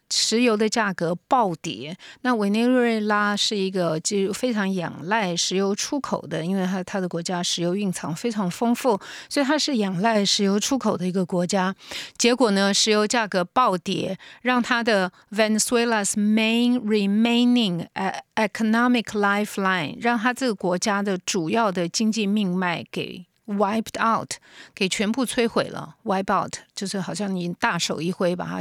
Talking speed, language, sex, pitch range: 65 wpm, English, female, 185-230 Hz